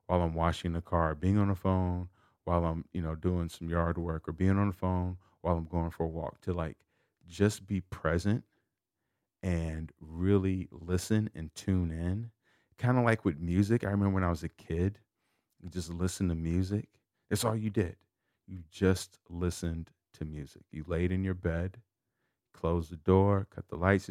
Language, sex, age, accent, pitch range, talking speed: English, male, 30-49, American, 85-105 Hz, 190 wpm